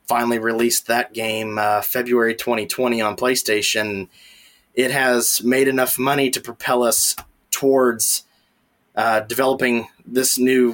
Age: 20-39